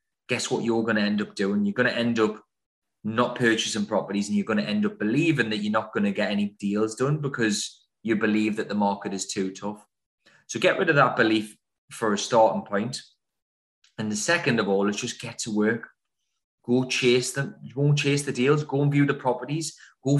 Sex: male